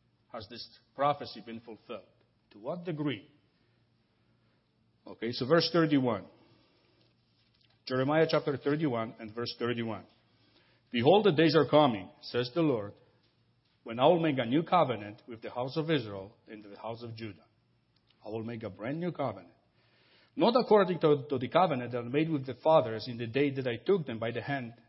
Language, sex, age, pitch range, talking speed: English, male, 50-69, 115-145 Hz, 175 wpm